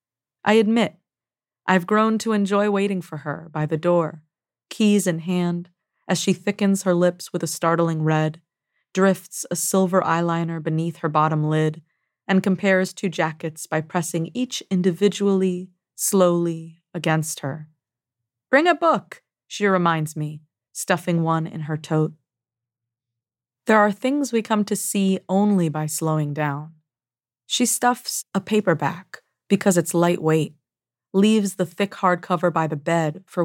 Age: 30-49